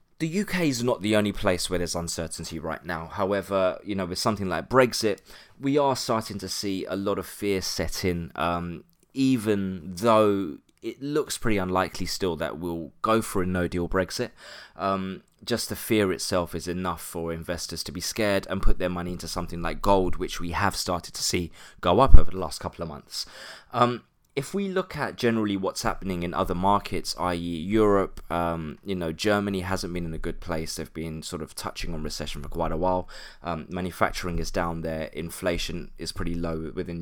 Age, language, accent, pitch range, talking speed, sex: 20-39, English, British, 85-100 Hz, 200 wpm, male